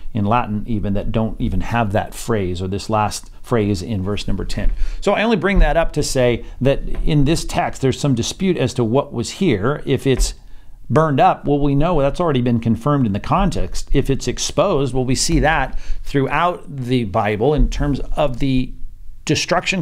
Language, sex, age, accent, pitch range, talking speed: English, male, 50-69, American, 105-135 Hz, 200 wpm